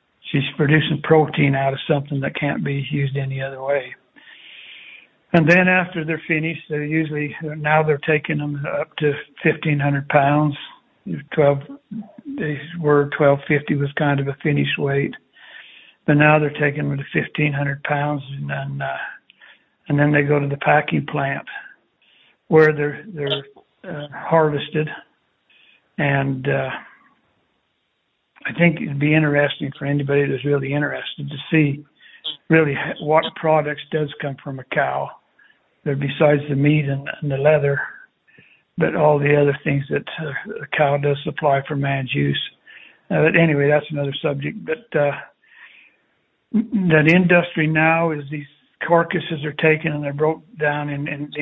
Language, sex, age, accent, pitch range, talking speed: English, male, 60-79, American, 140-155 Hz, 150 wpm